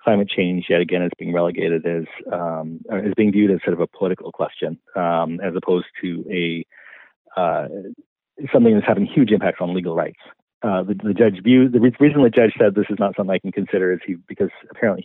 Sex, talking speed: male, 215 wpm